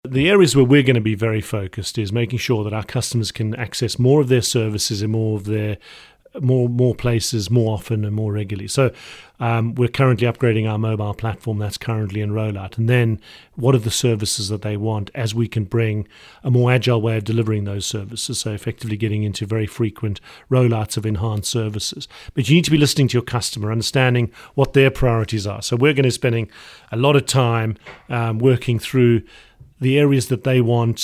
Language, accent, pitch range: English, British, 110-125 Hz